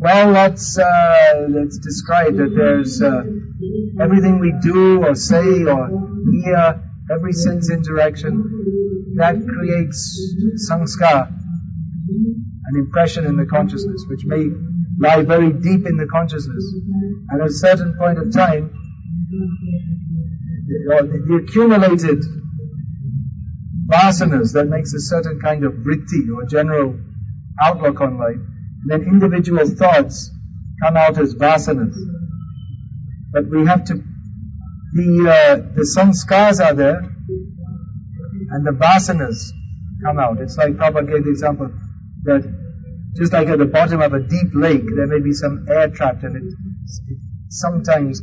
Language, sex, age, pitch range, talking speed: English, male, 50-69, 130-170 Hz, 130 wpm